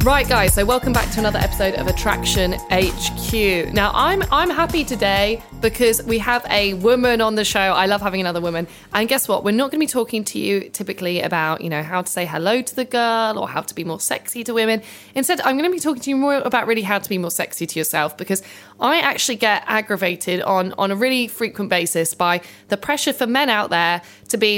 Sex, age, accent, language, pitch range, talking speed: female, 20-39, British, English, 190-240 Hz, 235 wpm